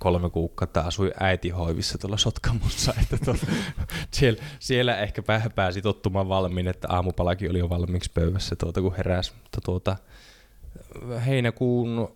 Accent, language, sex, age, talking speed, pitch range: native, Finnish, male, 20-39, 135 wpm, 90-105 Hz